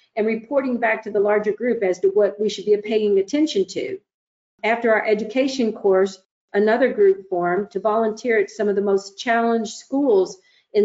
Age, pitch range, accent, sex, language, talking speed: 50-69, 195-250 Hz, American, female, English, 185 wpm